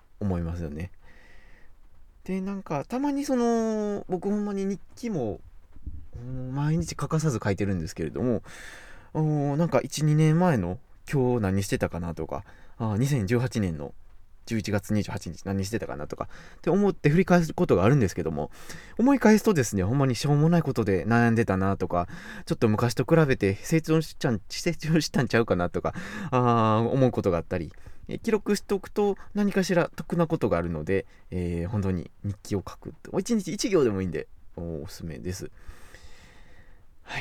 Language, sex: Japanese, male